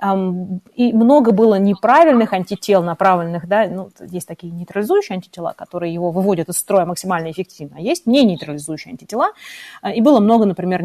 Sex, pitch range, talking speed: female, 180-230 Hz, 150 wpm